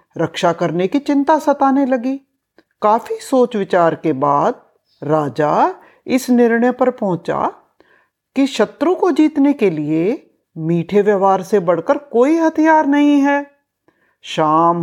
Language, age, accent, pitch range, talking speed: Hindi, 50-69, native, 170-270 Hz, 125 wpm